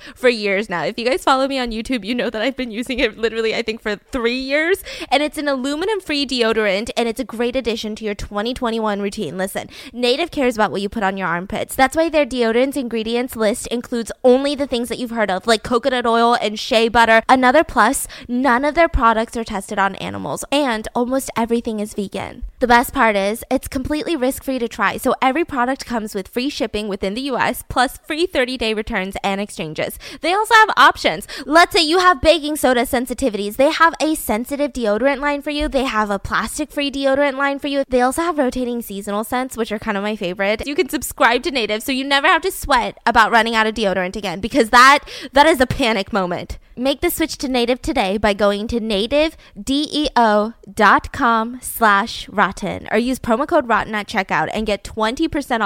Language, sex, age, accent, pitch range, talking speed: English, female, 10-29, American, 215-275 Hz, 210 wpm